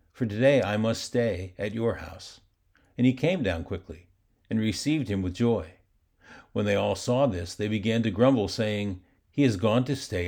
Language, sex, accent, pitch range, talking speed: English, male, American, 90-120 Hz, 195 wpm